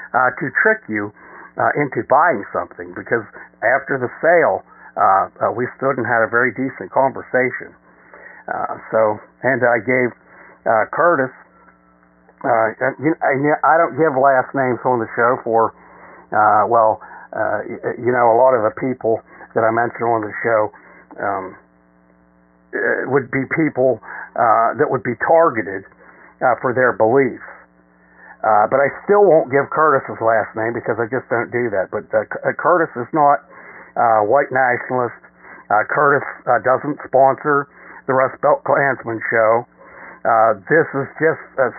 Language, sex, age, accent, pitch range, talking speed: English, male, 60-79, American, 105-140 Hz, 160 wpm